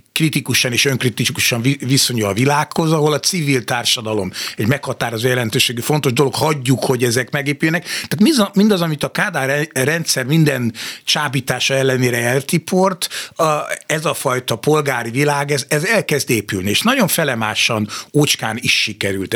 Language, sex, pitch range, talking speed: Hungarian, male, 115-150 Hz, 140 wpm